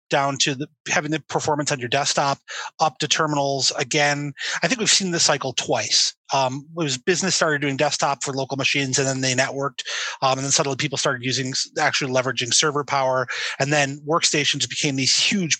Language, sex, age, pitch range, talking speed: English, male, 30-49, 135-155 Hz, 195 wpm